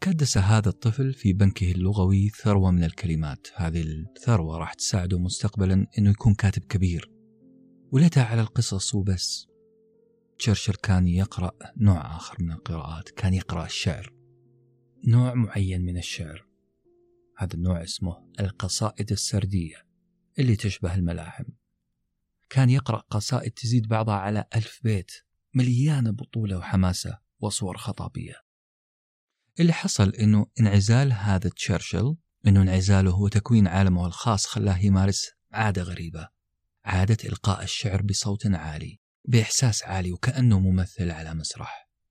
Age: 40-59